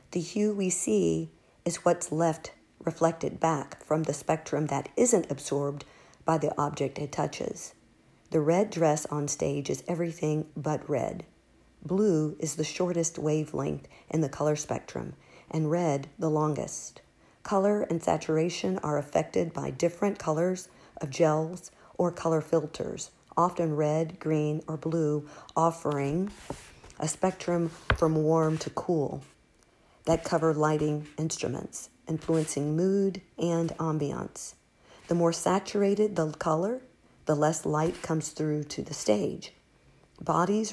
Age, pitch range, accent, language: 50-69, 150-175 Hz, American, English